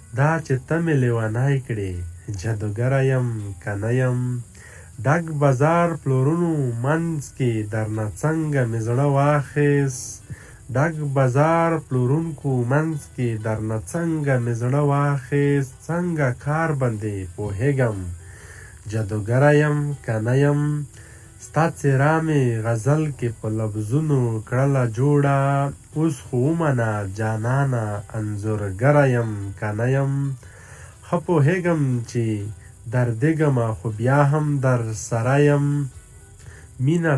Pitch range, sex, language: 110-145 Hz, male, Urdu